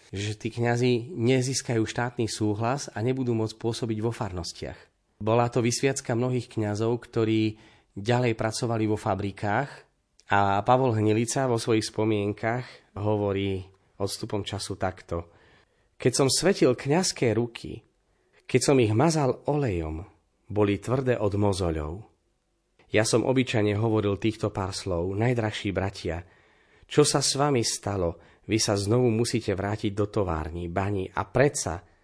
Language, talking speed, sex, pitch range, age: Slovak, 130 wpm, male, 100-125 Hz, 30-49